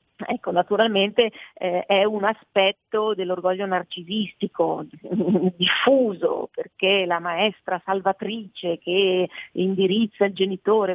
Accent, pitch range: native, 175-210 Hz